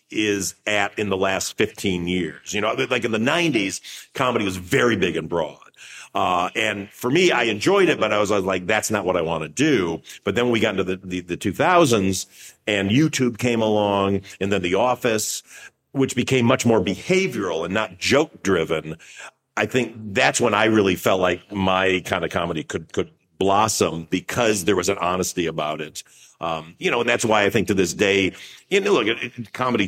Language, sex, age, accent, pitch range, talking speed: English, male, 50-69, American, 95-120 Hz, 210 wpm